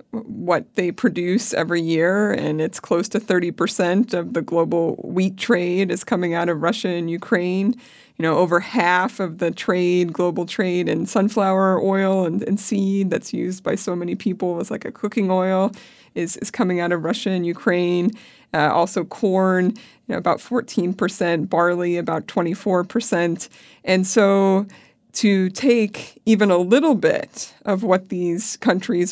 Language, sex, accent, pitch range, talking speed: English, female, American, 180-225 Hz, 165 wpm